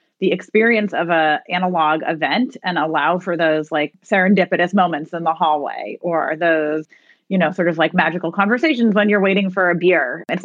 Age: 30-49